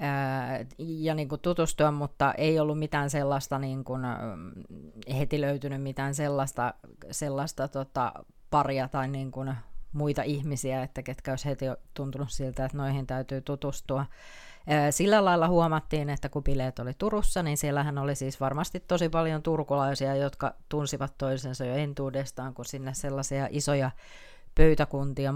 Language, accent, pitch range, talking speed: Finnish, native, 135-155 Hz, 125 wpm